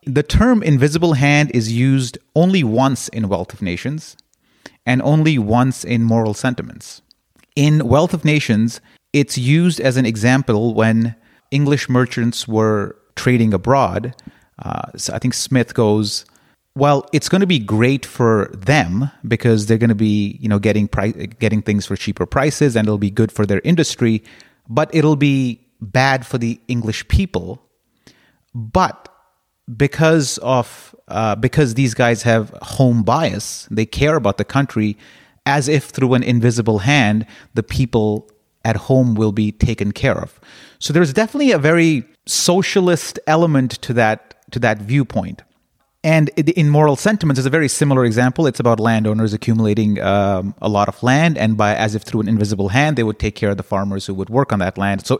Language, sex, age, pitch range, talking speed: English, male, 30-49, 110-145 Hz, 175 wpm